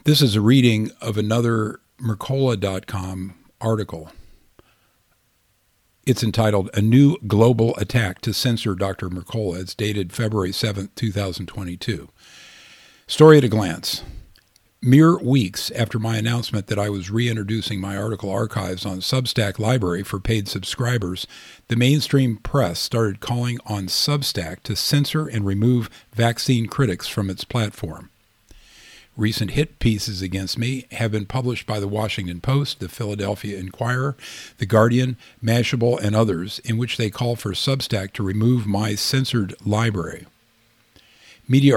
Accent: American